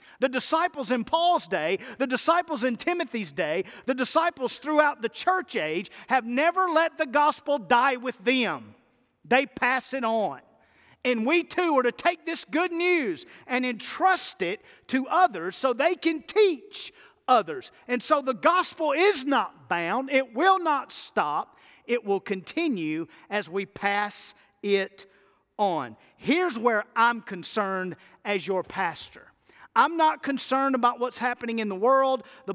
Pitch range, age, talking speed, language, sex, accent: 205-300 Hz, 50-69, 155 wpm, English, male, American